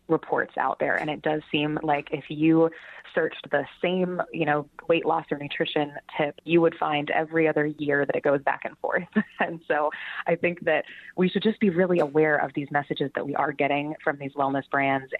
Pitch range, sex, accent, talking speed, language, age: 150-170 Hz, female, American, 215 wpm, English, 20-39